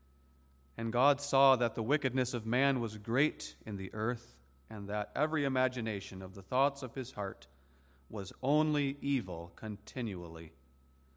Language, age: English, 40-59